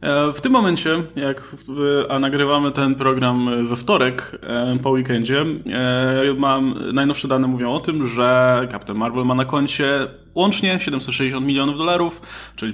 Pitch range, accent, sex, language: 130-160 Hz, native, male, Polish